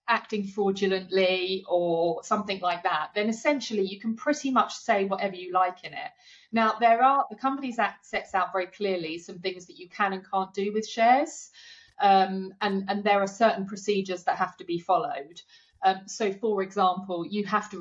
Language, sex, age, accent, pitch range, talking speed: English, female, 40-59, British, 180-220 Hz, 190 wpm